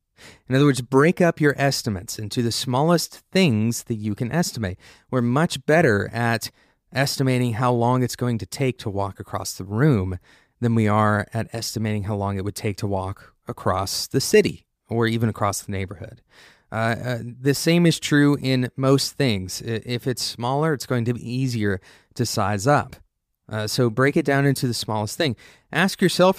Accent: American